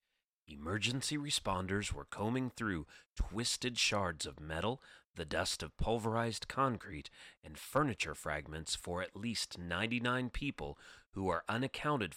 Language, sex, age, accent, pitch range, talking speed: English, male, 40-59, American, 80-120 Hz, 125 wpm